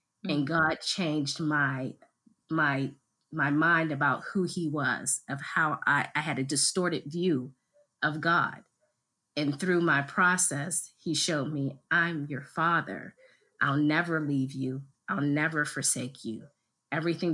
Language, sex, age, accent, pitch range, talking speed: English, female, 30-49, American, 135-160 Hz, 140 wpm